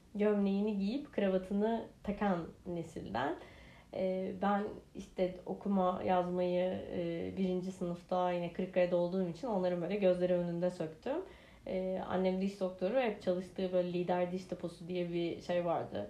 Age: 30-49